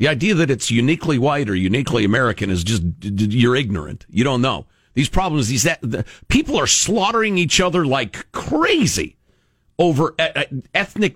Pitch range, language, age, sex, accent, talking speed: 100-165 Hz, English, 50-69, male, American, 150 wpm